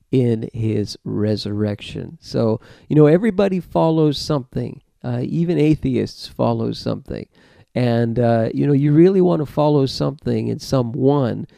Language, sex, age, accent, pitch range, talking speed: English, male, 50-69, American, 110-135 Hz, 135 wpm